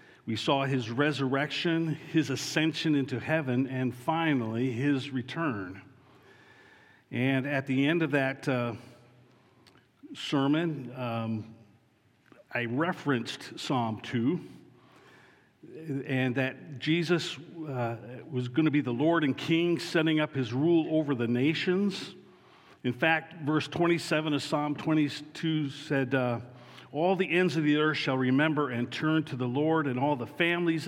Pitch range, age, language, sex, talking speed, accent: 125-155 Hz, 50-69, English, male, 135 wpm, American